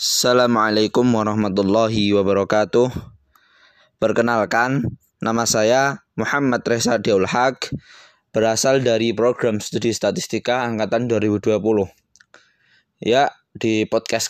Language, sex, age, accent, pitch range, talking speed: Indonesian, male, 20-39, native, 110-130 Hz, 85 wpm